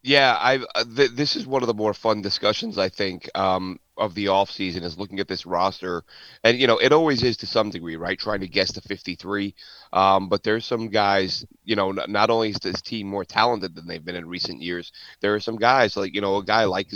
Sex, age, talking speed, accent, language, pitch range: male, 30-49, 250 wpm, American, English, 100-115 Hz